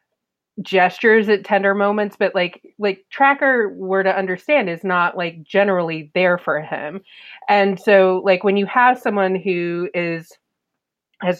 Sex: female